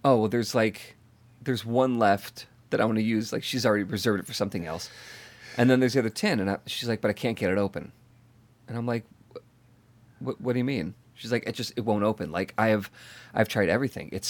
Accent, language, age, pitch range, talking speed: American, English, 30-49, 110-135 Hz, 235 wpm